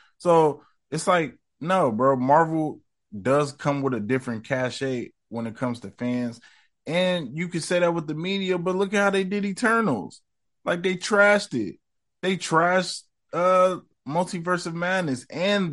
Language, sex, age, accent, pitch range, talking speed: English, male, 20-39, American, 115-160 Hz, 165 wpm